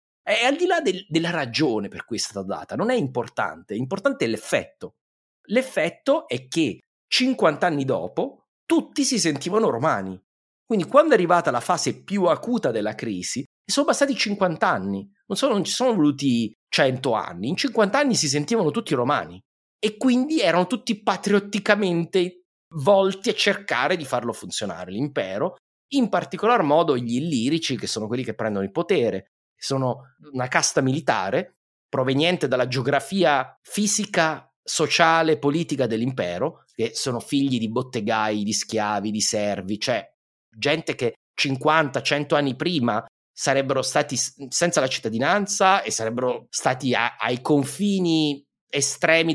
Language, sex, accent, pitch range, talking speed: Italian, male, native, 125-200 Hz, 145 wpm